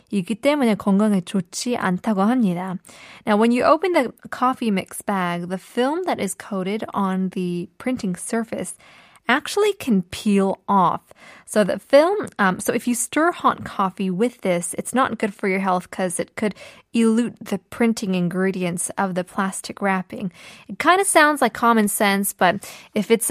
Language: Korean